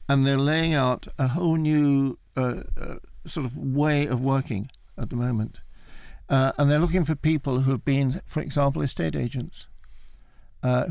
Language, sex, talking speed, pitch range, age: English, male, 170 wpm, 115-140 Hz, 60-79